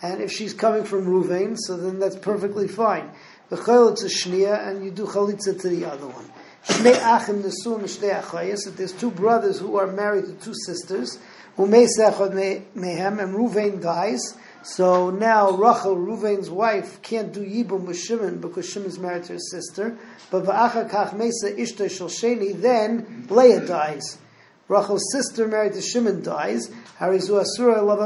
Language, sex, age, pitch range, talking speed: English, male, 40-59, 185-210 Hz, 130 wpm